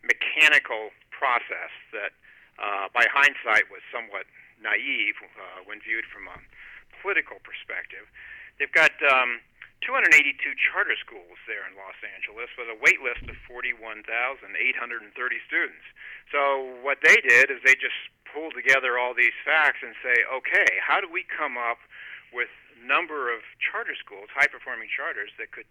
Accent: American